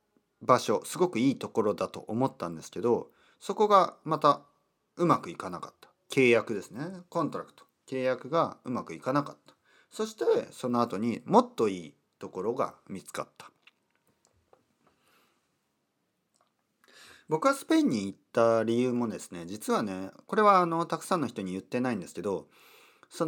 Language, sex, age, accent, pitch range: Japanese, male, 40-59, native, 105-175 Hz